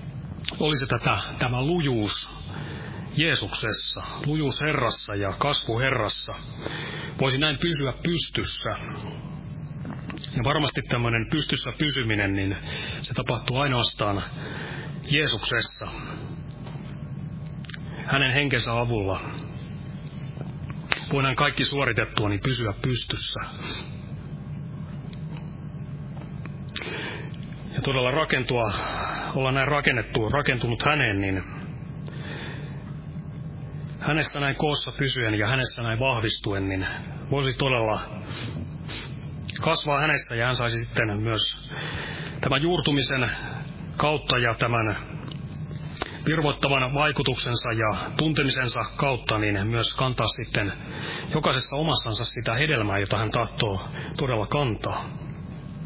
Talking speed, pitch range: 85 wpm, 120-150 Hz